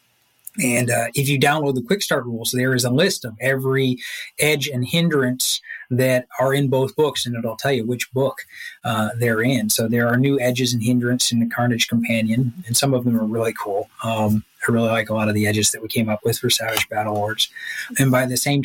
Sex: male